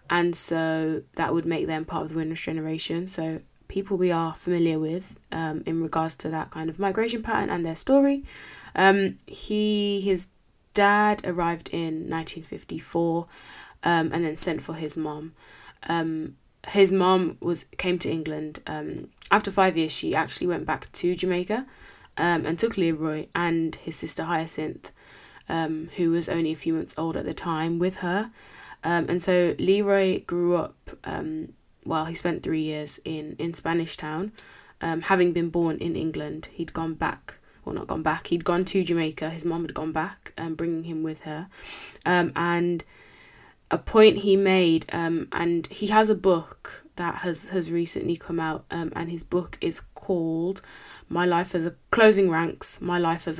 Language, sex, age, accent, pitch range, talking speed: English, female, 20-39, British, 160-185 Hz, 175 wpm